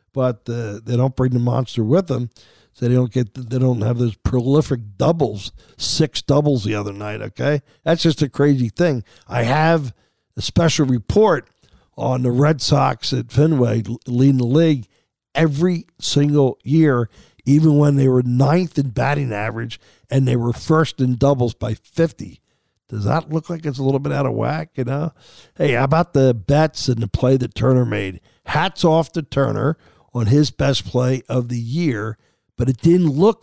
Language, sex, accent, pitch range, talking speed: English, male, American, 120-150 Hz, 185 wpm